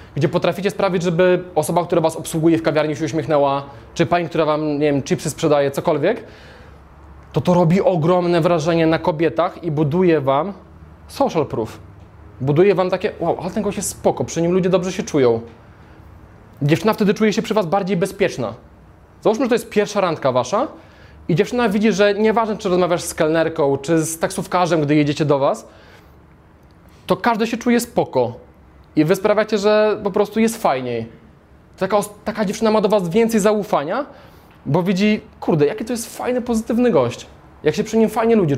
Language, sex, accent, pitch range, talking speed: Polish, male, native, 135-195 Hz, 175 wpm